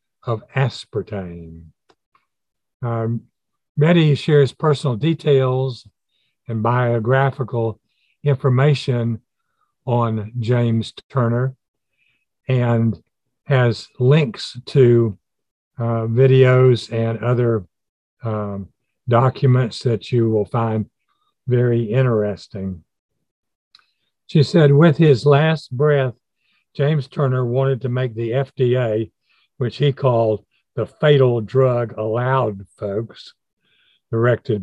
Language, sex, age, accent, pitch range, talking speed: English, male, 60-79, American, 110-135 Hz, 90 wpm